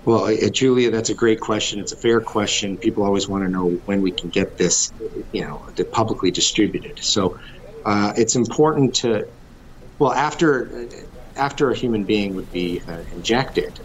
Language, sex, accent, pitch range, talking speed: English, male, American, 90-115 Hz, 175 wpm